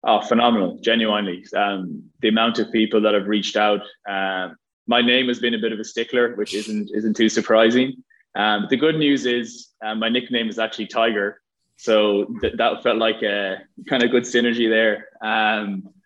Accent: Irish